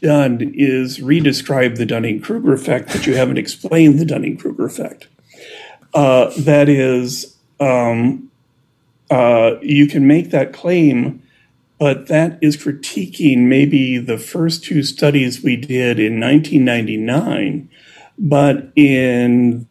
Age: 40-59